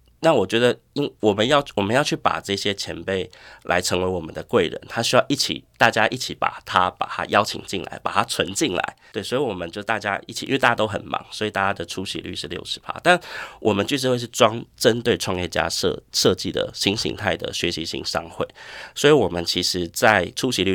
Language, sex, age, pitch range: Chinese, male, 30-49, 90-110 Hz